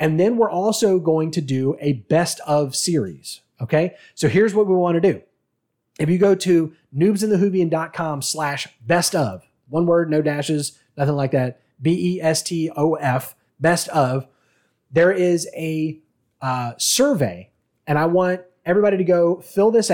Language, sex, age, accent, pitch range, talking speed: English, male, 30-49, American, 140-180 Hz, 150 wpm